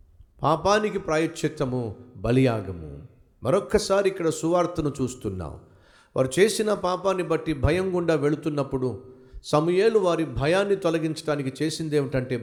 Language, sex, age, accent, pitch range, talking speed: Telugu, male, 50-69, native, 130-175 Hz, 100 wpm